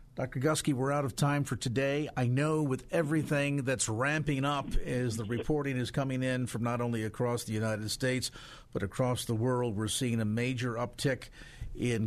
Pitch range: 115-135 Hz